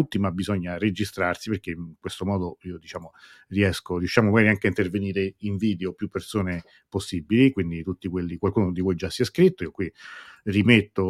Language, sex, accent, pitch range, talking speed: Italian, male, native, 90-105 Hz, 180 wpm